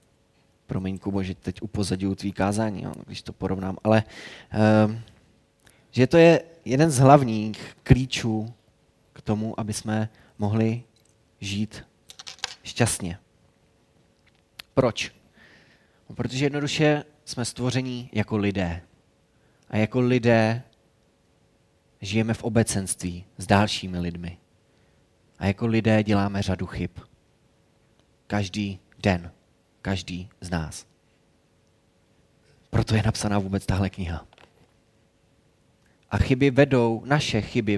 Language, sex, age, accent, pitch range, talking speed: Czech, male, 20-39, native, 95-115 Hz, 100 wpm